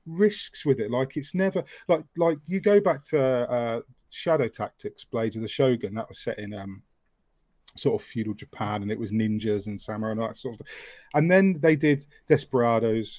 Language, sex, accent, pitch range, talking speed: English, male, British, 110-145 Hz, 195 wpm